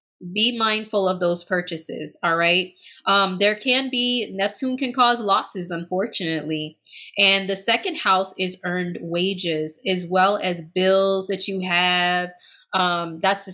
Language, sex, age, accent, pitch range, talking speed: English, female, 20-39, American, 175-210 Hz, 145 wpm